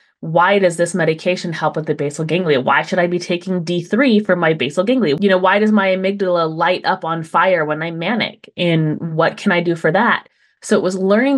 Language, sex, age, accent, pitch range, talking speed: English, female, 20-39, American, 170-220 Hz, 225 wpm